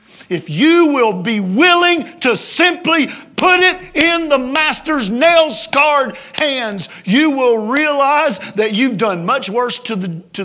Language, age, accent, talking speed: English, 50-69, American, 145 wpm